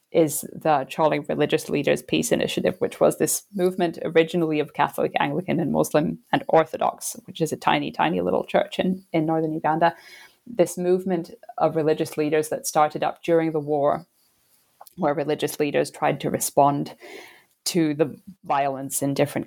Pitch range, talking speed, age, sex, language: 150-175 Hz, 160 wpm, 20-39, female, English